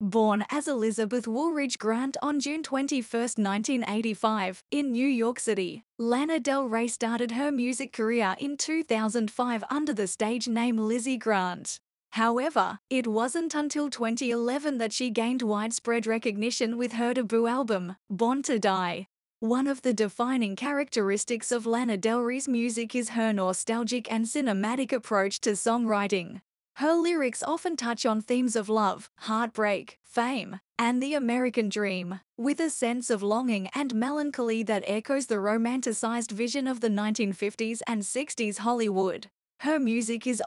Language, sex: English, female